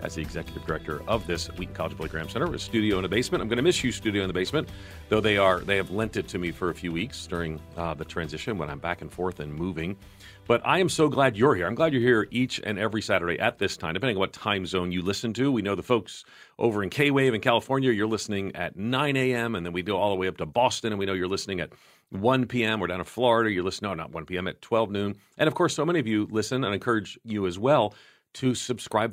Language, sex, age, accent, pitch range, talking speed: English, male, 40-59, American, 85-115 Hz, 280 wpm